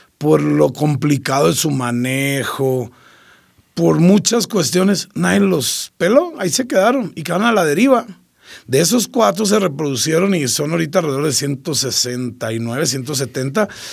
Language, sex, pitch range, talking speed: Spanish, male, 140-195 Hz, 140 wpm